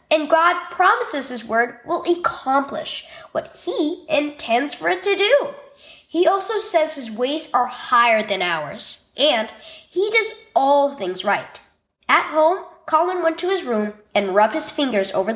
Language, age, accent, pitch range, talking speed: English, 10-29, American, 230-340 Hz, 160 wpm